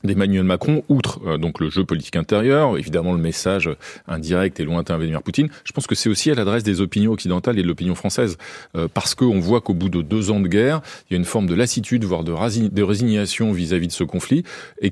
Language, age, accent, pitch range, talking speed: French, 40-59, French, 95-130 Hz, 235 wpm